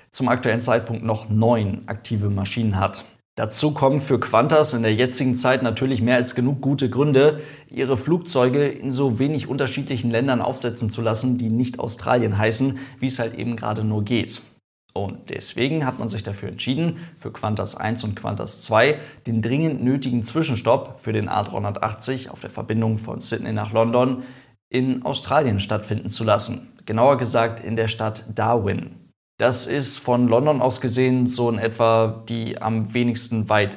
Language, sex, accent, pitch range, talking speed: German, male, German, 110-130 Hz, 165 wpm